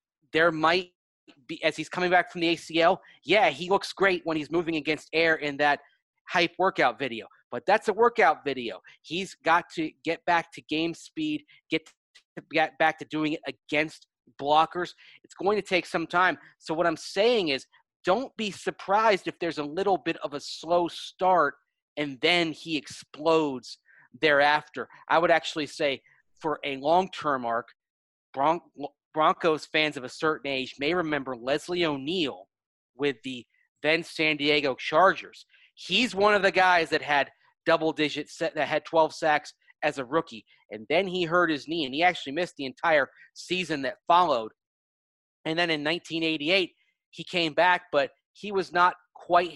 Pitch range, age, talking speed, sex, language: 150-175 Hz, 30-49, 175 wpm, male, English